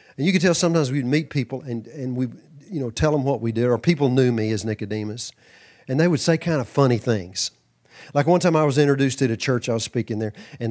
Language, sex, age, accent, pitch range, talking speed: English, male, 40-59, American, 115-155 Hz, 260 wpm